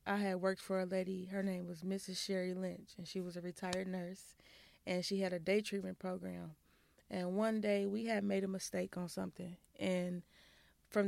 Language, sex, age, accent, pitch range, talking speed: English, female, 20-39, American, 180-200 Hz, 200 wpm